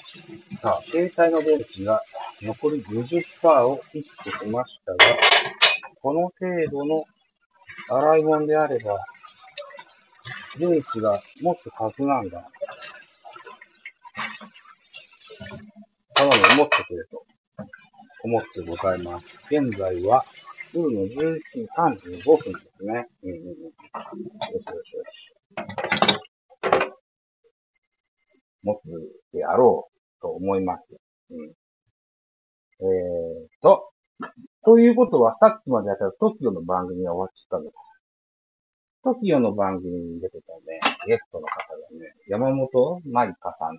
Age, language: 50-69, Japanese